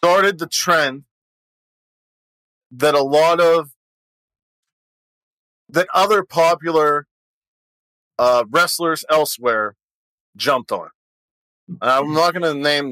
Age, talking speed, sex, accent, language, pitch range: 40-59, 95 wpm, male, American, English, 125-155 Hz